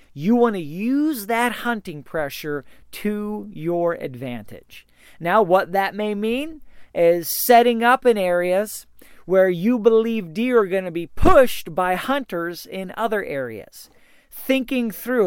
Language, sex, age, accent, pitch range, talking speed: English, male, 40-59, American, 165-220 Hz, 140 wpm